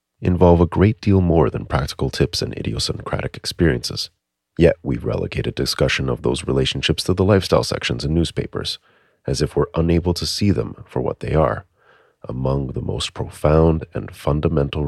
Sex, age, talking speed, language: male, 40-59, 170 wpm, English